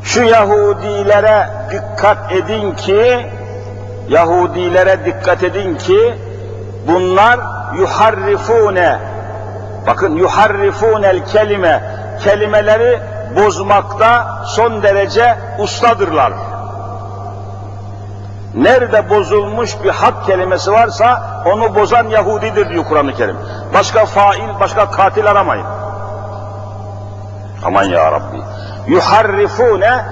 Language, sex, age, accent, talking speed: Turkish, male, 50-69, native, 80 wpm